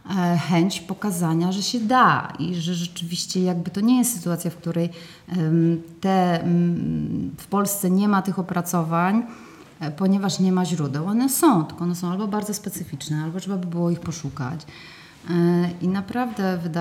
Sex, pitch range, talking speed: female, 165-200 Hz, 145 wpm